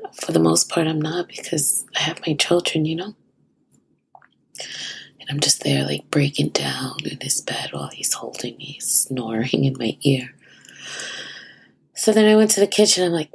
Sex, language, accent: female, English, American